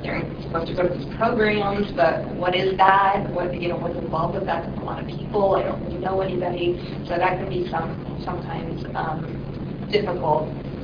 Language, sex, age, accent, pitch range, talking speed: English, female, 40-59, American, 160-195 Hz, 190 wpm